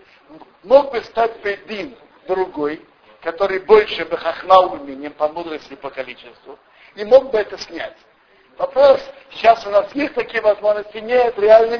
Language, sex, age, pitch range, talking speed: Russian, male, 60-79, 170-270 Hz, 140 wpm